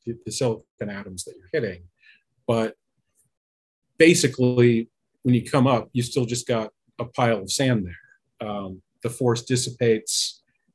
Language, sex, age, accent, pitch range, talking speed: English, male, 40-59, American, 95-120 Hz, 140 wpm